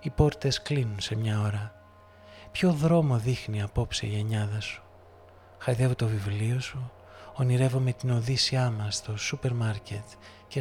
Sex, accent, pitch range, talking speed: male, native, 105-135 Hz, 145 wpm